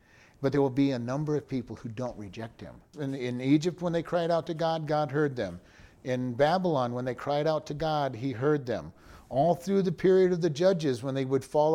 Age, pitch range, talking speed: 50-69, 135-170 Hz, 235 wpm